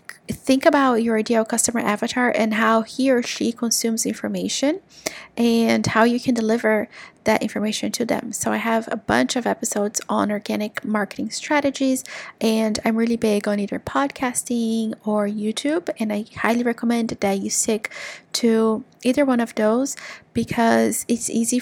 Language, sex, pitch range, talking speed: English, female, 215-240 Hz, 160 wpm